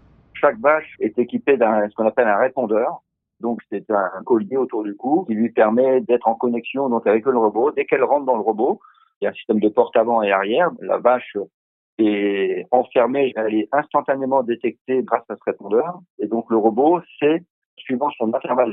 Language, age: French, 50-69